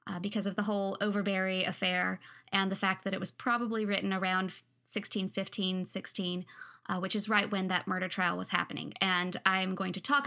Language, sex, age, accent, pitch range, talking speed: English, female, 20-39, American, 190-220 Hz, 180 wpm